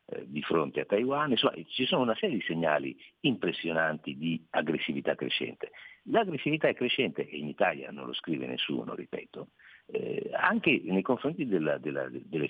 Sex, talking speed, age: male, 160 wpm, 50-69